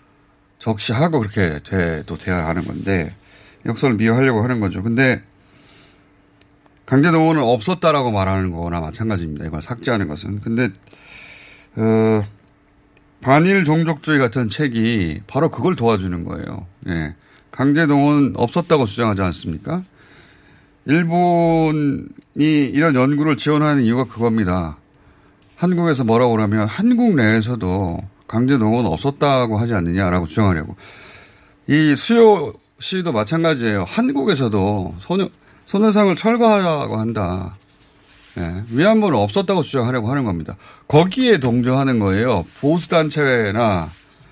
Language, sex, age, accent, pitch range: Korean, male, 30-49, native, 95-145 Hz